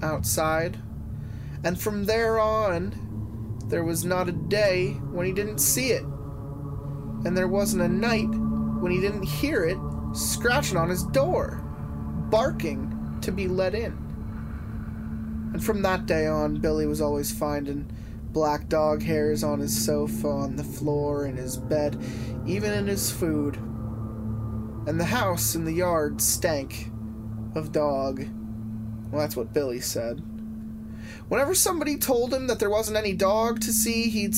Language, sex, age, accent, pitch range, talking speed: English, male, 20-39, American, 110-155 Hz, 150 wpm